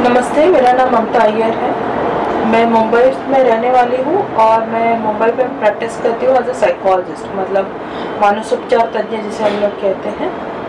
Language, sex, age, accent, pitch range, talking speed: Hindi, female, 20-39, native, 210-255 Hz, 170 wpm